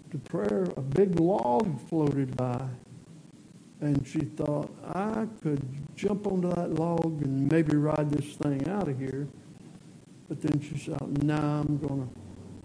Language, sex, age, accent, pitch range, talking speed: English, male, 60-79, American, 140-170 Hz, 150 wpm